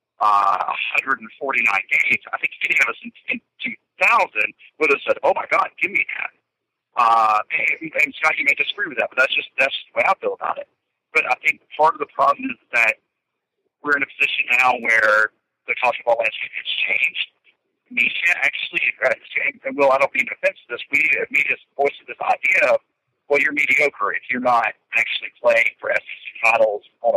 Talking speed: 195 wpm